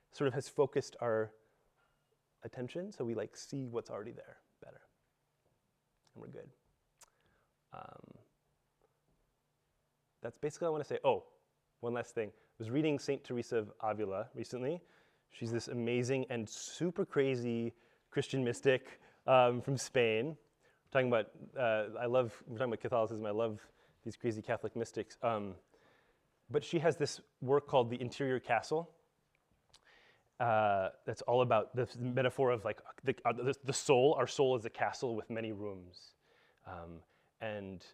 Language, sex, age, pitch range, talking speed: English, male, 30-49, 110-140 Hz, 155 wpm